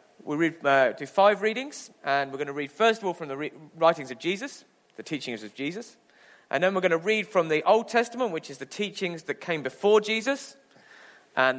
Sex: male